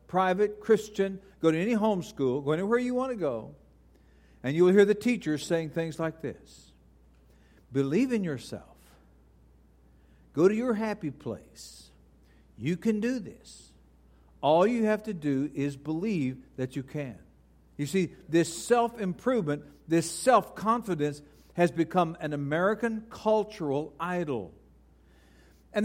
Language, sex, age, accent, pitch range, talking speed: English, male, 60-79, American, 130-200 Hz, 130 wpm